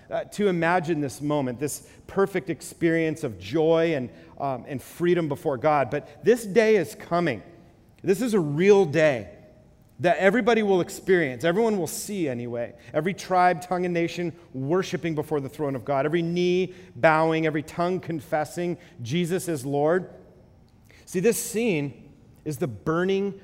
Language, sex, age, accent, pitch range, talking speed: English, male, 40-59, American, 140-225 Hz, 155 wpm